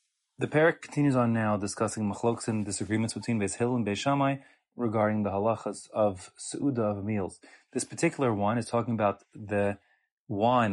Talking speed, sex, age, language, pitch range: 160 wpm, male, 30-49, English, 105-125 Hz